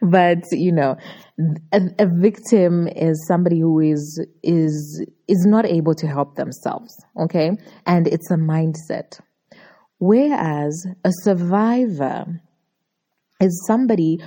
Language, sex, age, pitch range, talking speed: English, female, 20-39, 160-210 Hz, 115 wpm